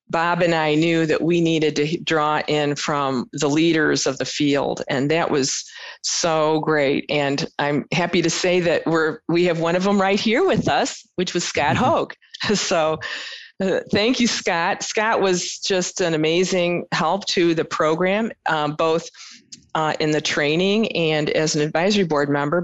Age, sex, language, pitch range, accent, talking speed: 40-59, female, English, 155-195 Hz, American, 180 wpm